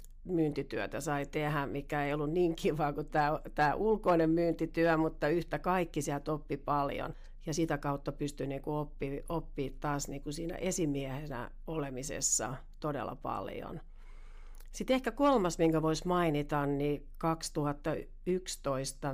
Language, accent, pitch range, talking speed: Finnish, native, 145-165 Hz, 130 wpm